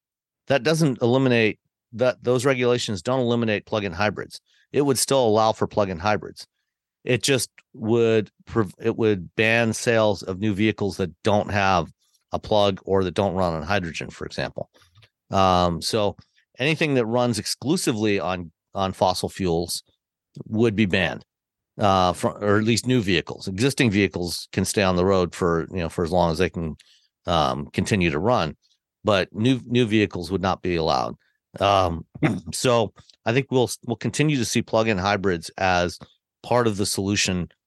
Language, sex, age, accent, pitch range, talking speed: English, male, 50-69, American, 95-120 Hz, 165 wpm